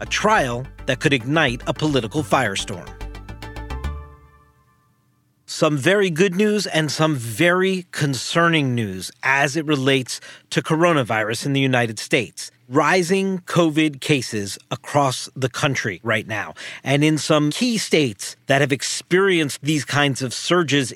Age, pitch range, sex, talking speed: 40-59, 135-185 Hz, male, 130 wpm